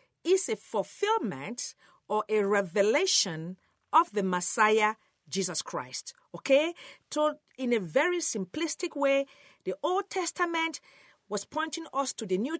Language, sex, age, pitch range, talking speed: English, female, 50-69, 205-330 Hz, 130 wpm